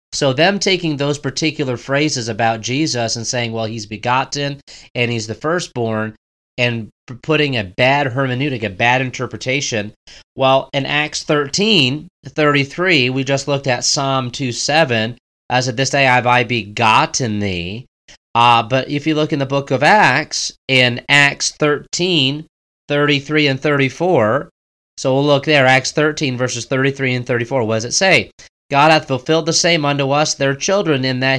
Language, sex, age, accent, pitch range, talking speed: English, male, 30-49, American, 125-155 Hz, 165 wpm